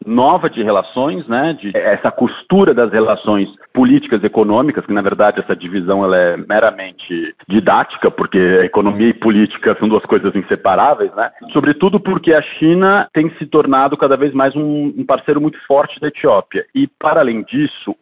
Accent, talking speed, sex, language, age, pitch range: Brazilian, 170 wpm, male, Portuguese, 40-59, 115-160 Hz